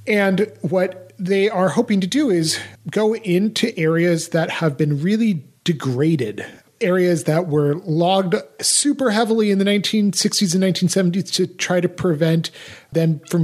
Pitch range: 150-190 Hz